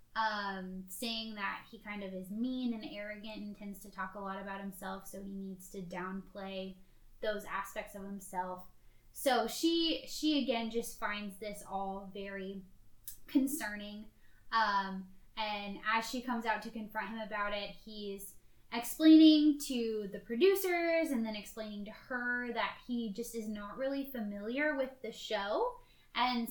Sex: female